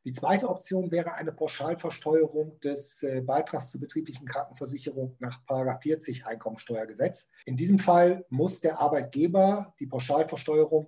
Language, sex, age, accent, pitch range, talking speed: German, male, 50-69, German, 130-170 Hz, 120 wpm